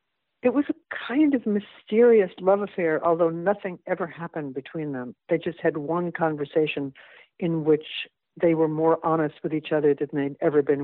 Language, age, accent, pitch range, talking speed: English, 60-79, American, 145-195 Hz, 175 wpm